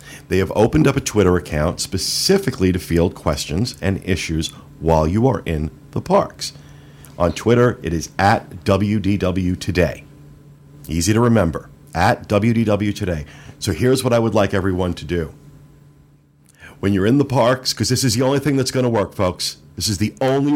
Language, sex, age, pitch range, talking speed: English, male, 50-69, 90-135 Hz, 180 wpm